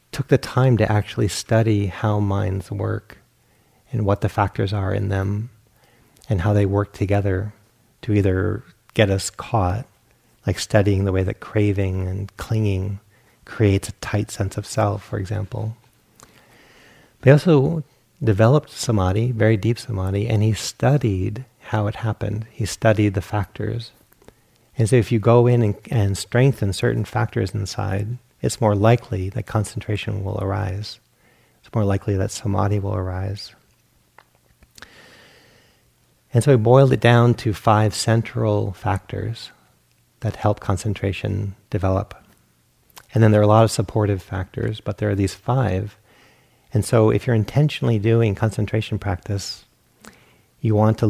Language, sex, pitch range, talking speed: English, male, 100-115 Hz, 145 wpm